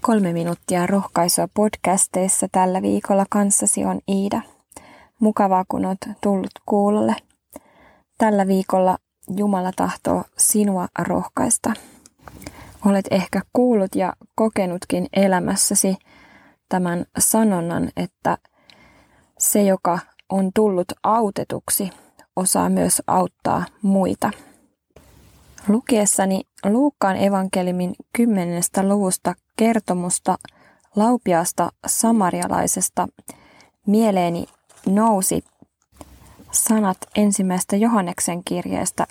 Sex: female